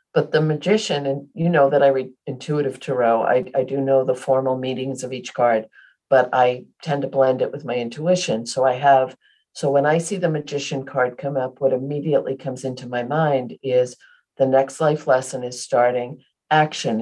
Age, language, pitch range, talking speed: 50-69, English, 130-155 Hz, 200 wpm